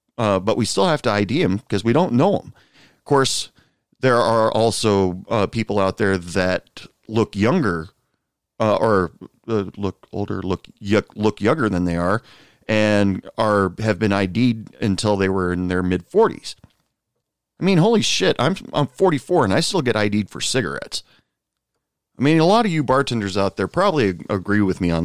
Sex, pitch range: male, 95-125 Hz